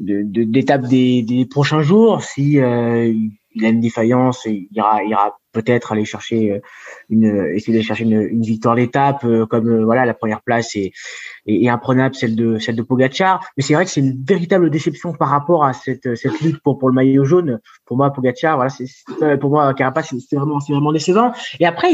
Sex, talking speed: male, 220 wpm